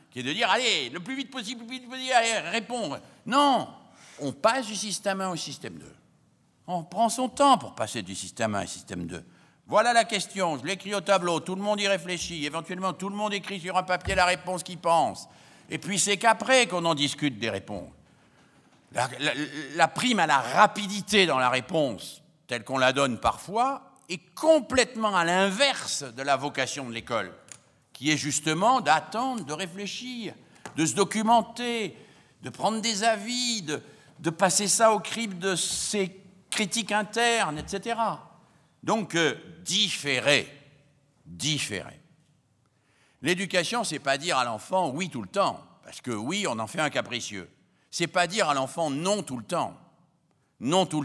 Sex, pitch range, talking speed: male, 145-210 Hz, 175 wpm